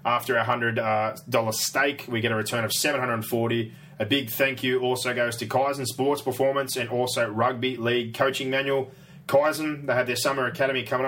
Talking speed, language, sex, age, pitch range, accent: 180 wpm, English, male, 20-39, 115-135 Hz, Australian